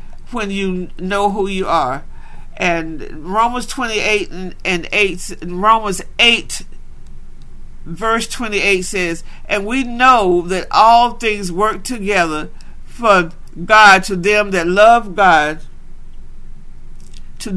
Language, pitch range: English, 180-230 Hz